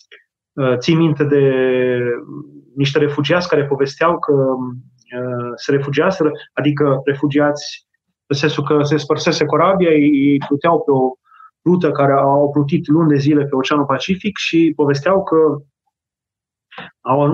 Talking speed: 120 wpm